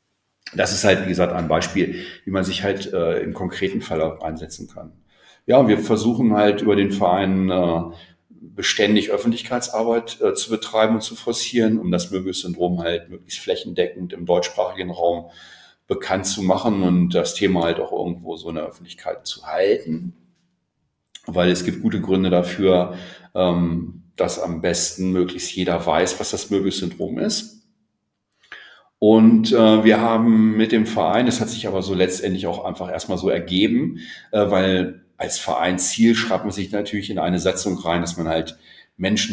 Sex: male